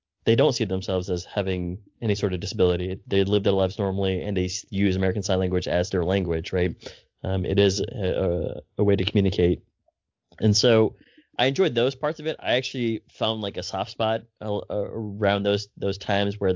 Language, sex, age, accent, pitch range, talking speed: English, male, 20-39, American, 95-110 Hz, 190 wpm